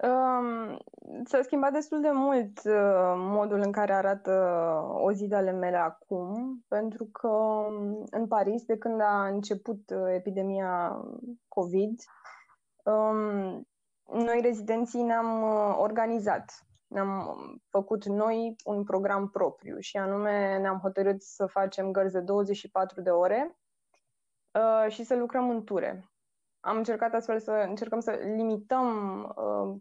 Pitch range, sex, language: 195-240 Hz, female, Romanian